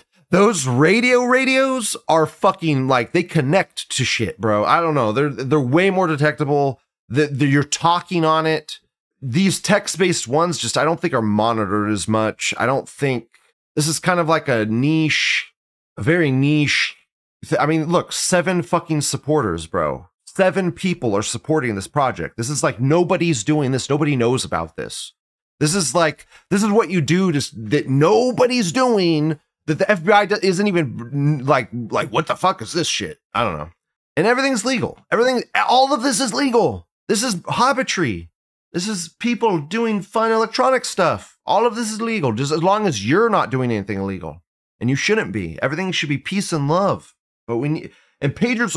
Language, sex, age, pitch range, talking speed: English, male, 30-49, 135-195 Hz, 185 wpm